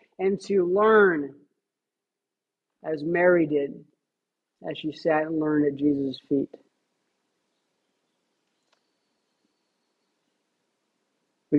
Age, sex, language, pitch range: 40-59, male, English, 155-215 Hz